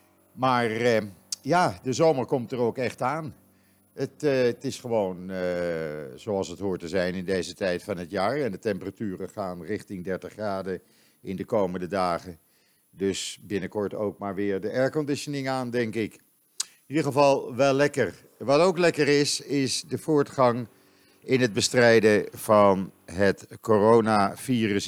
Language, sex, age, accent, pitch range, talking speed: Dutch, male, 50-69, Dutch, 100-130 Hz, 160 wpm